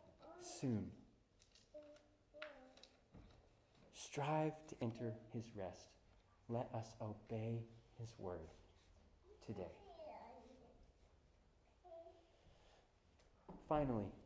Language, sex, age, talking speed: English, male, 30-49, 55 wpm